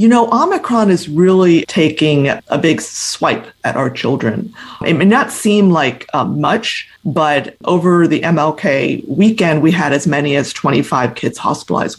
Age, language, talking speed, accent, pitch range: 30-49, English, 160 wpm, American, 150-210 Hz